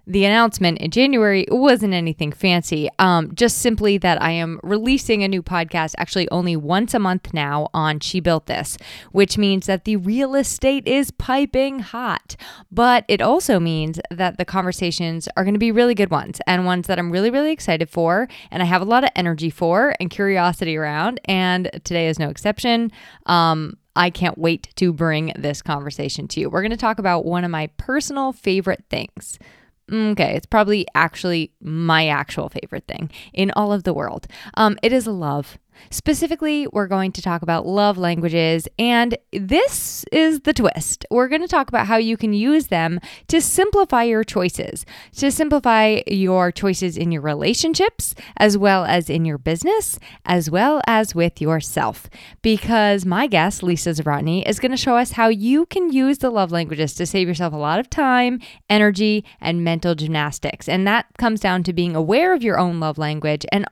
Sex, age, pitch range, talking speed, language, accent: female, 20-39, 170-230 Hz, 185 wpm, English, American